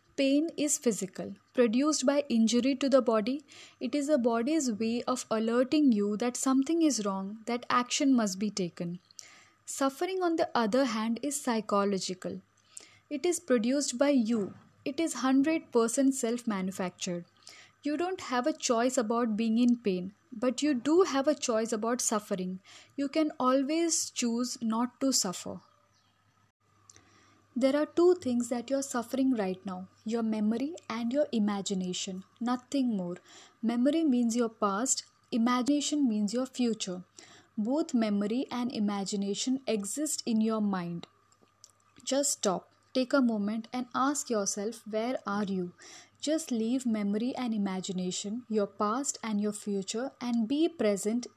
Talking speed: 145 wpm